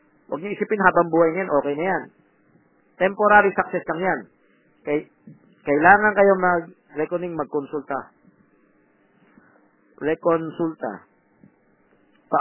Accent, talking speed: native, 100 wpm